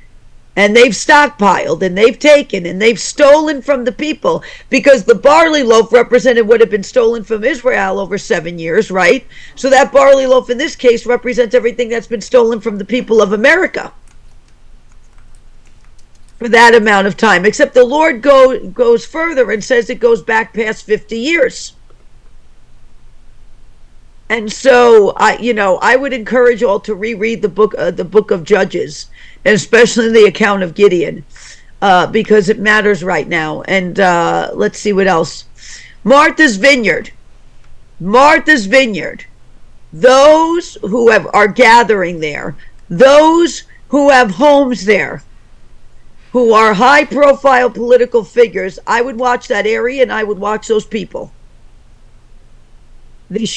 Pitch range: 210-265 Hz